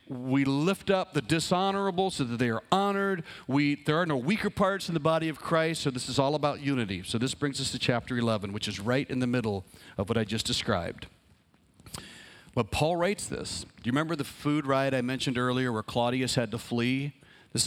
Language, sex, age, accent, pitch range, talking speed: English, male, 40-59, American, 120-160 Hz, 215 wpm